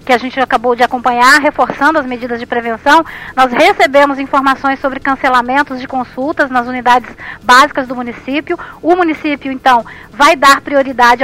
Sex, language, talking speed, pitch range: female, Portuguese, 155 wpm, 255-295 Hz